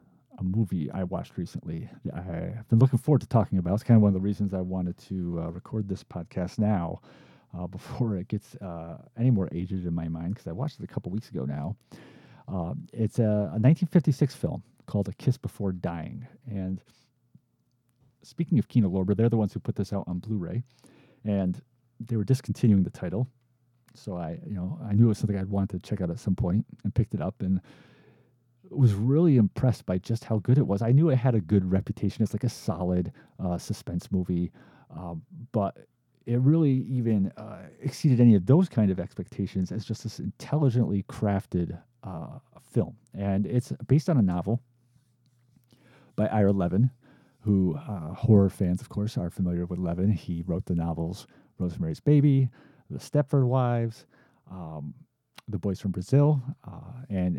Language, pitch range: English, 95-125 Hz